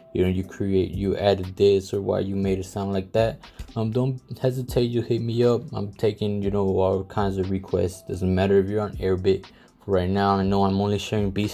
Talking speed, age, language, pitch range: 230 wpm, 20-39, English, 95-110 Hz